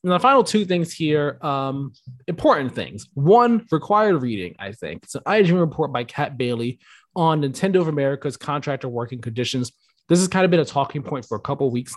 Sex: male